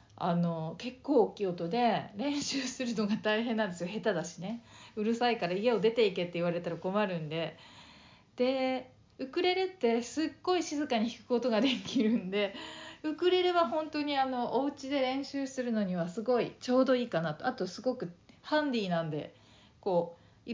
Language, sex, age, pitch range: Japanese, female, 40-59, 180-260 Hz